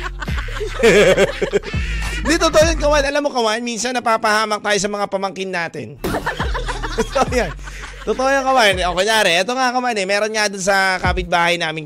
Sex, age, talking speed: male, 30-49, 150 wpm